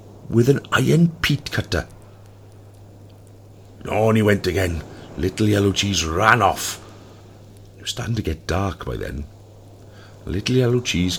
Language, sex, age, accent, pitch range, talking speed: English, male, 60-79, British, 85-105 Hz, 140 wpm